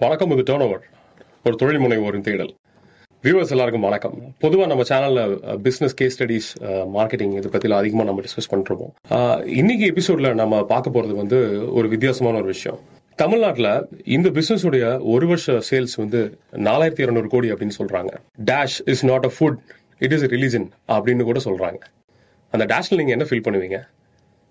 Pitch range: 105-135 Hz